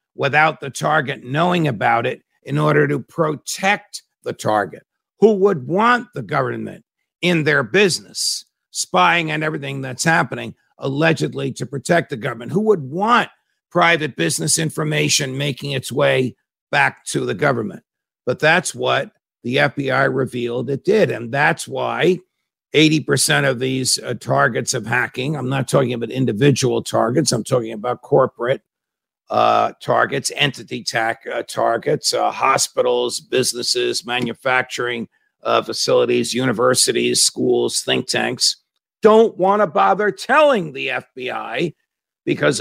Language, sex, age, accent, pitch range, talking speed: English, male, 60-79, American, 125-170 Hz, 135 wpm